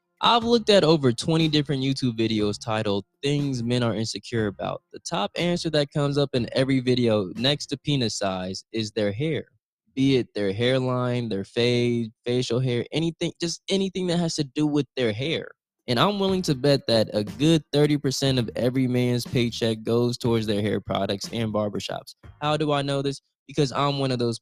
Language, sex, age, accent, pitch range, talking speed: English, male, 20-39, American, 110-140 Hz, 190 wpm